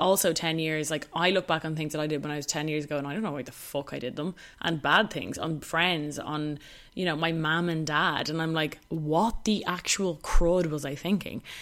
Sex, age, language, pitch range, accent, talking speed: female, 20-39, English, 155-190 Hz, Irish, 260 wpm